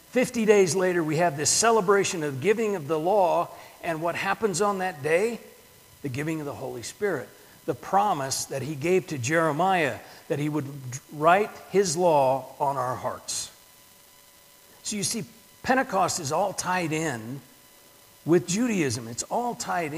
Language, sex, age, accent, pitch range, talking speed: English, male, 50-69, American, 145-195 Hz, 160 wpm